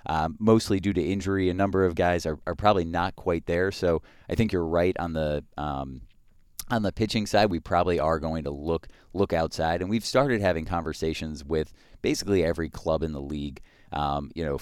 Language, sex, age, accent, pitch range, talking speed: English, male, 30-49, American, 80-95 Hz, 205 wpm